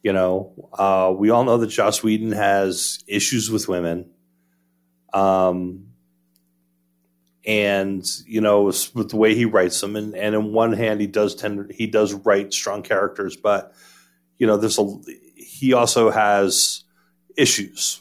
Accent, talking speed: American, 150 wpm